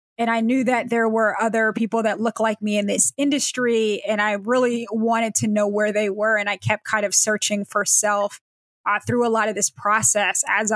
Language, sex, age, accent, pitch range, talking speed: English, female, 20-39, American, 205-225 Hz, 225 wpm